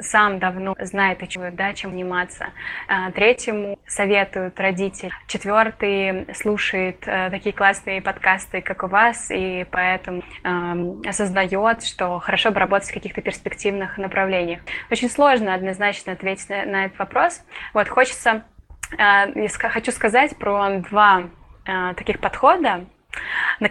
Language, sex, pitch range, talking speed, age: Russian, female, 195-225 Hz, 110 wpm, 20-39